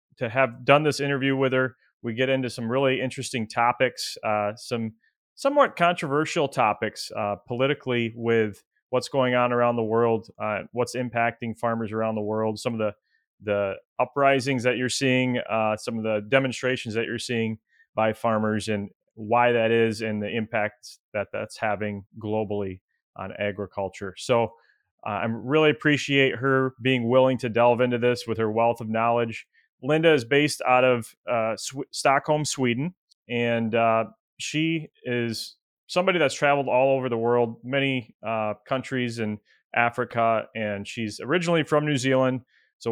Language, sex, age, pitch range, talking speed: English, male, 30-49, 110-130 Hz, 160 wpm